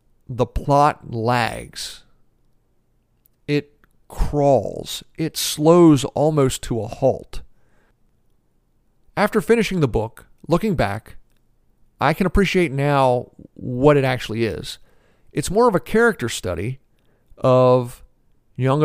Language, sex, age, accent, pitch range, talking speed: English, male, 50-69, American, 120-145 Hz, 105 wpm